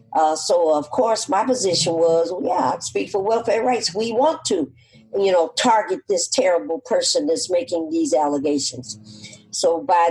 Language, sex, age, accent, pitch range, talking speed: English, female, 50-69, American, 175-295 Hz, 165 wpm